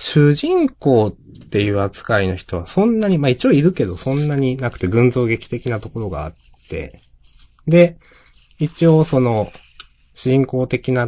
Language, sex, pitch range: Japanese, male, 85-135 Hz